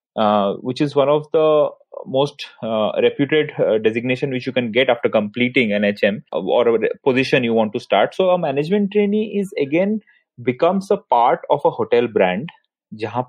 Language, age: Hindi, 30-49